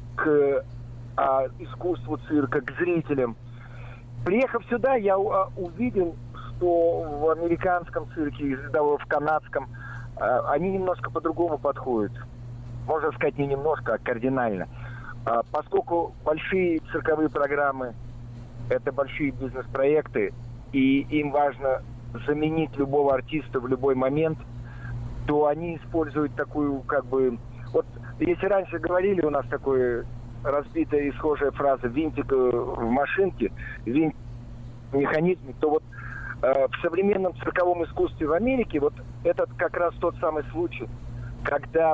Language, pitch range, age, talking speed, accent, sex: Russian, 120-160 Hz, 40-59, 115 wpm, native, male